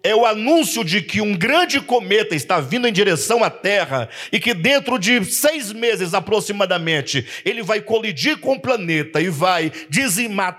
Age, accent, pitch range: 50-69, Brazilian, 155-230 Hz